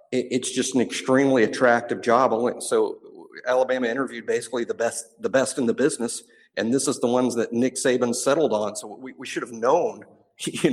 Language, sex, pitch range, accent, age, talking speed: English, male, 115-155 Hz, American, 50-69, 190 wpm